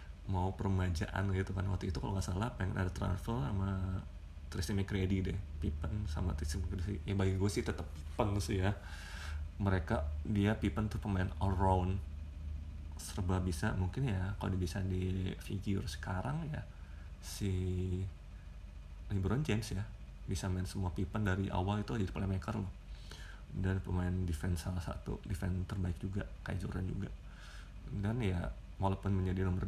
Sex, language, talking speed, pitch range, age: male, Indonesian, 155 wpm, 90-100 Hz, 30-49